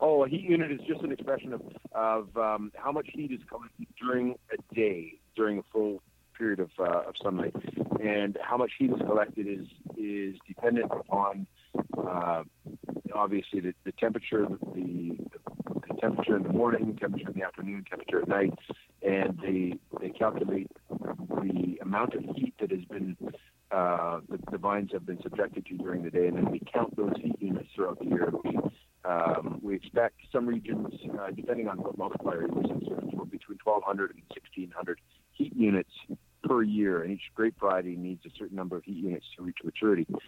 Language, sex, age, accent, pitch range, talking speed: English, male, 50-69, American, 90-115 Hz, 180 wpm